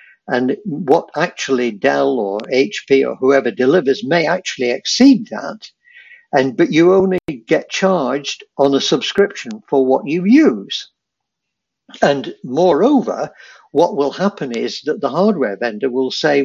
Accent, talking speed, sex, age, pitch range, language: British, 140 wpm, male, 60-79, 135-215 Hz, English